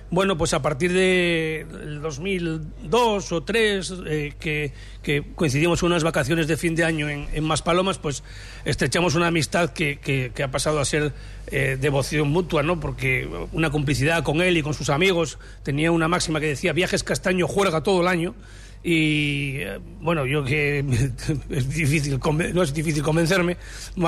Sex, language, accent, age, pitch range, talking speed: male, Spanish, Spanish, 40-59, 150-190 Hz, 165 wpm